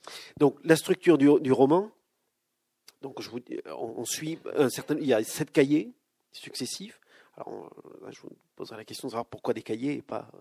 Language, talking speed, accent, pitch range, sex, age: French, 210 wpm, French, 120-160 Hz, male, 40-59